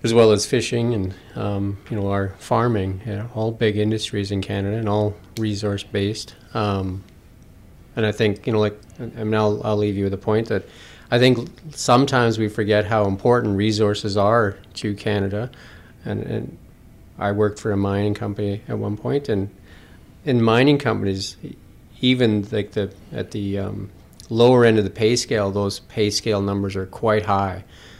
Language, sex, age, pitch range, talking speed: English, male, 40-59, 100-115 Hz, 175 wpm